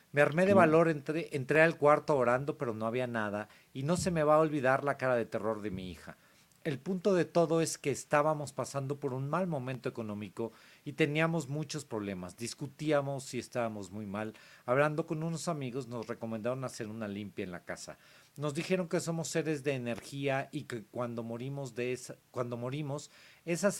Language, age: Spanish, 40-59